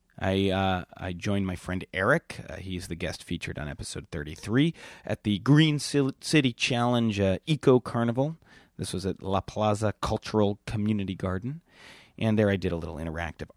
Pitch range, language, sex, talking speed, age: 90-130 Hz, English, male, 170 wpm, 30-49